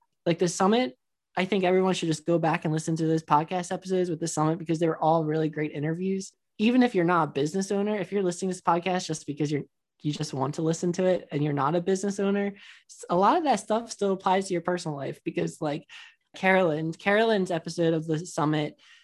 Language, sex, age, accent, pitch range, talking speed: English, male, 20-39, American, 160-220 Hz, 235 wpm